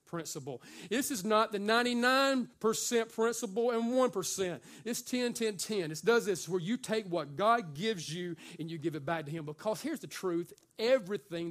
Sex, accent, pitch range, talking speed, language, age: male, American, 180-235 Hz, 195 wpm, English, 40-59